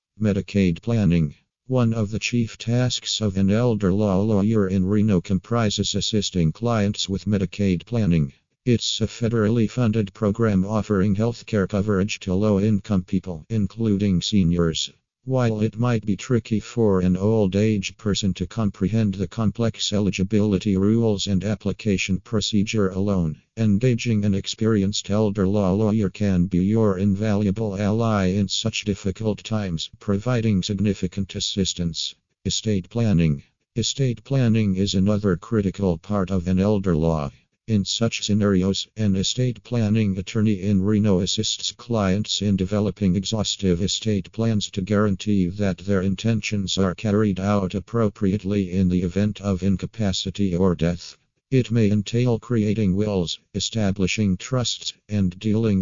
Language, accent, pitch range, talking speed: English, American, 95-110 Hz, 135 wpm